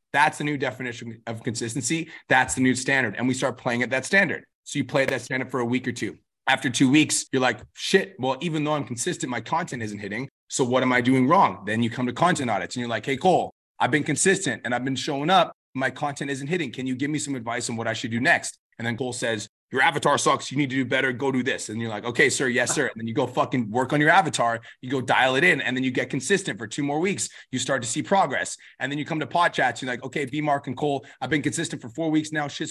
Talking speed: 285 wpm